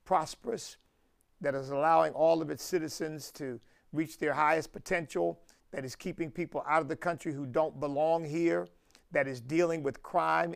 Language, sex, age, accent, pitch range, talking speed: English, male, 50-69, American, 145-185 Hz, 170 wpm